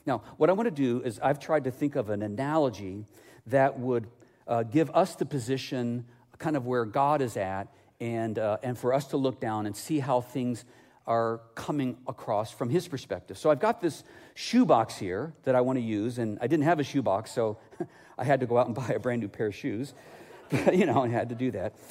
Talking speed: 225 wpm